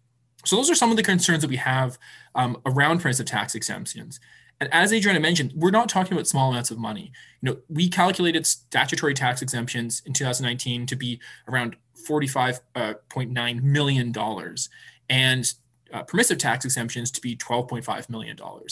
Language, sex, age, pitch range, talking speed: English, male, 20-39, 120-155 Hz, 160 wpm